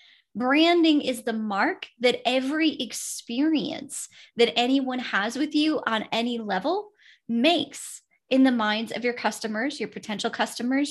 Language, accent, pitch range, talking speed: English, American, 225-290 Hz, 140 wpm